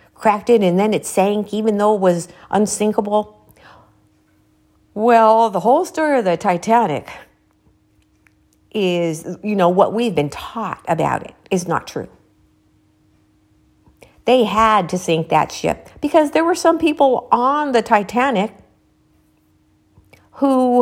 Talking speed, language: 125 wpm, English